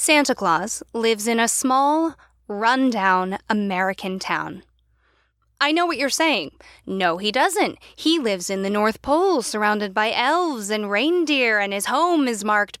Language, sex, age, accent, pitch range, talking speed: English, female, 10-29, American, 175-235 Hz, 155 wpm